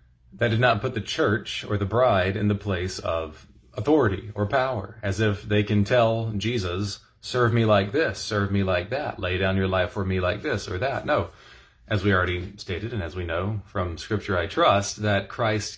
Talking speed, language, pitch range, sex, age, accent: 210 wpm, English, 100-115 Hz, male, 30-49, American